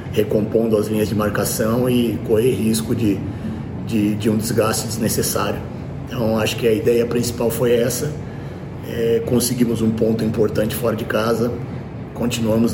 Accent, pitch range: Brazilian, 110-120 Hz